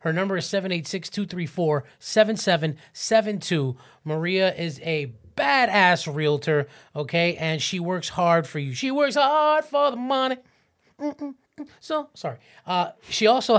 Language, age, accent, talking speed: English, 30-49, American, 125 wpm